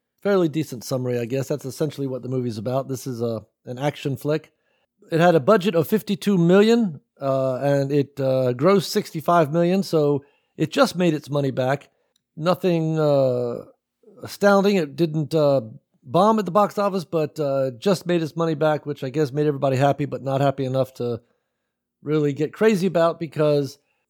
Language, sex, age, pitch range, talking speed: English, male, 50-69, 135-175 Hz, 180 wpm